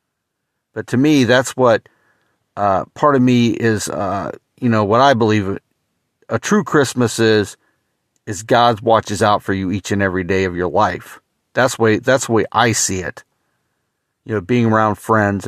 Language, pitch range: English, 105-130 Hz